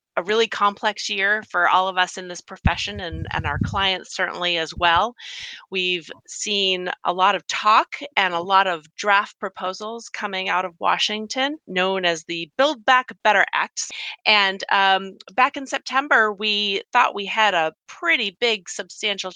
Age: 30-49